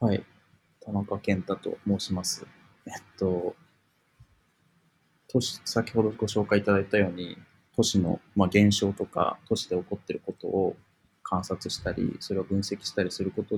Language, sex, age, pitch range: Japanese, male, 20-39, 95-110 Hz